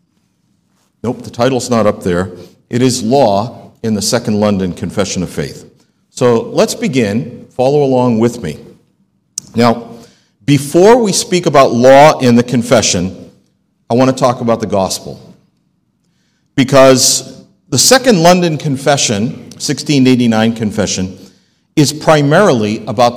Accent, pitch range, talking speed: American, 110-145 Hz, 125 wpm